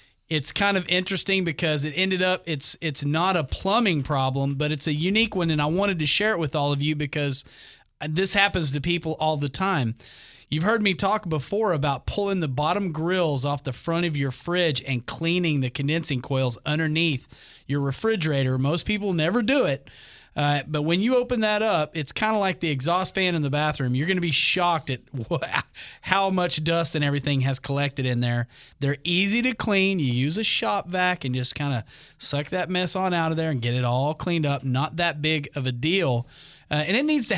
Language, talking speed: English, 220 wpm